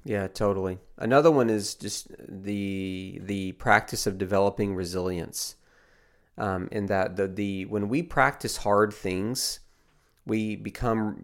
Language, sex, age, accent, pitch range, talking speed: English, male, 40-59, American, 95-115 Hz, 130 wpm